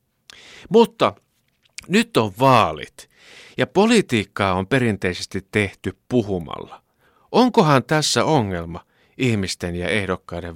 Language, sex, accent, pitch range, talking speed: Finnish, male, native, 95-145 Hz, 90 wpm